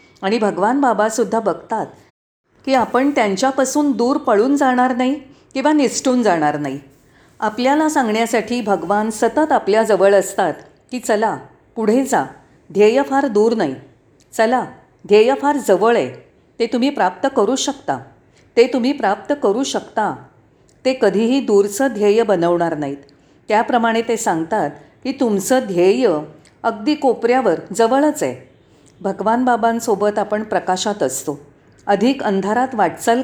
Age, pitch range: 40-59, 195-250 Hz